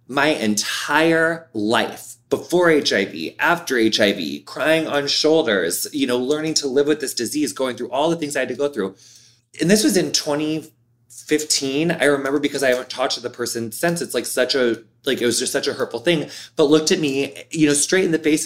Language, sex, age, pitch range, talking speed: English, male, 20-39, 115-145 Hz, 210 wpm